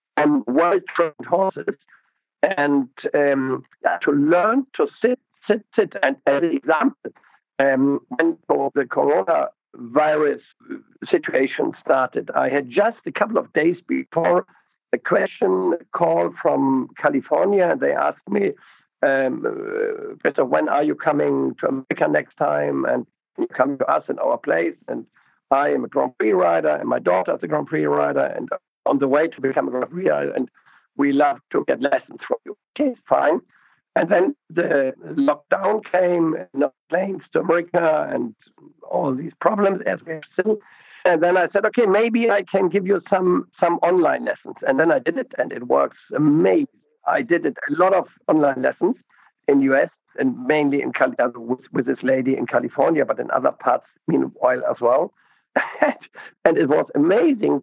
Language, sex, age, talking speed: English, male, 60-79, 170 wpm